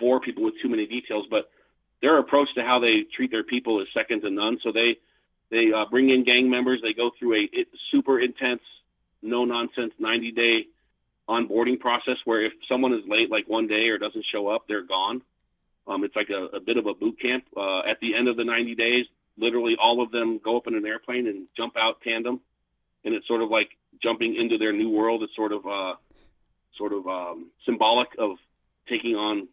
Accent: American